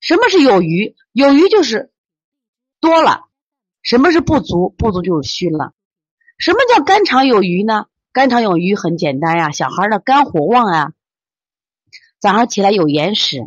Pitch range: 170-250 Hz